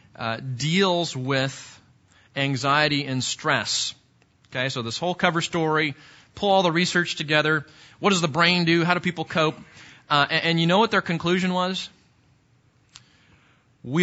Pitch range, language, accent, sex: 110-150 Hz, English, American, male